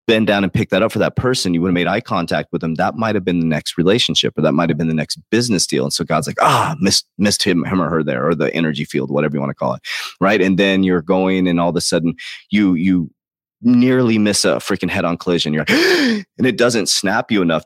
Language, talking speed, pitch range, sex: English, 275 wpm, 85-110 Hz, male